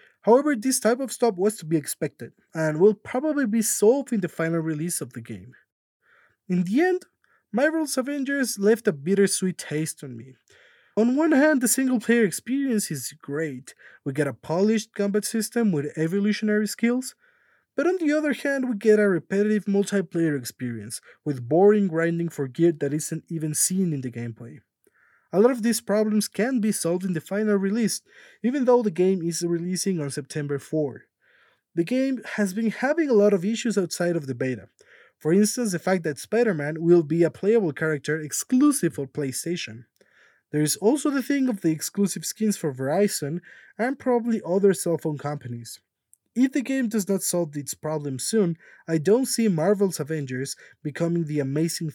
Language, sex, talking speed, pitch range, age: English, male, 180 wpm, 155-230 Hz, 20-39